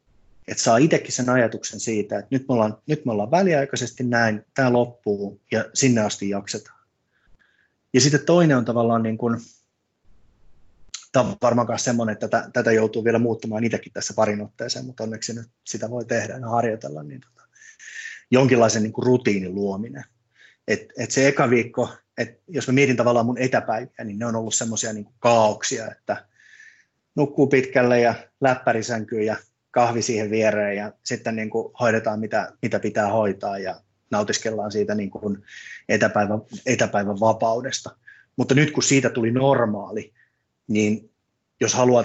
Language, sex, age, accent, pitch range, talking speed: Finnish, male, 30-49, native, 105-120 Hz, 155 wpm